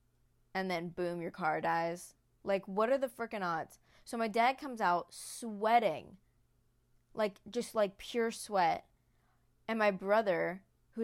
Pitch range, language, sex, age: 170-215 Hz, English, female, 20-39